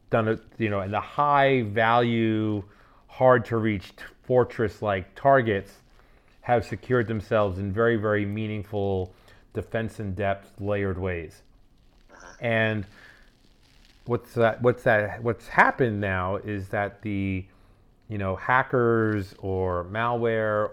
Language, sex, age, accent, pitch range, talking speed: English, male, 30-49, American, 100-120 Hz, 120 wpm